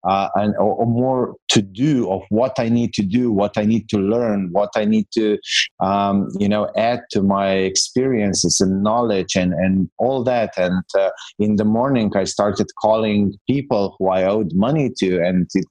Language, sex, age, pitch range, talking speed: English, male, 30-49, 95-115 Hz, 190 wpm